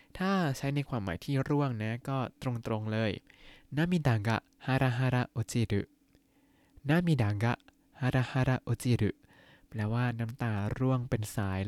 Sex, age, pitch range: male, 20-39, 110-140 Hz